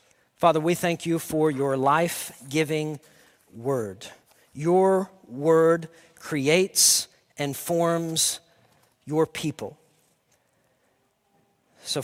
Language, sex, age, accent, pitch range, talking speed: English, male, 50-69, American, 140-175 Hz, 80 wpm